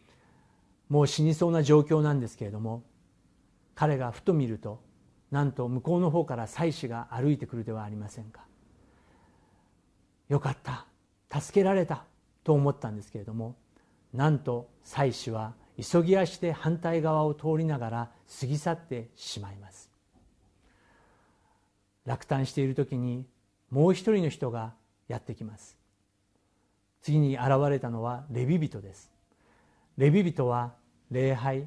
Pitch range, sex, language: 105-155 Hz, male, Japanese